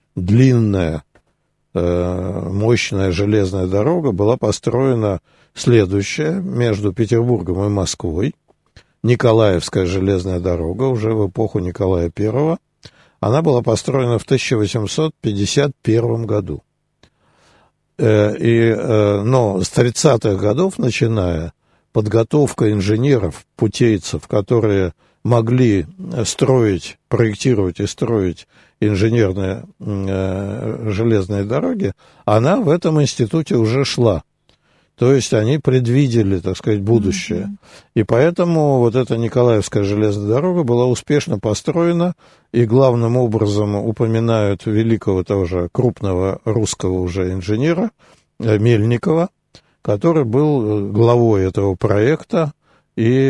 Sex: male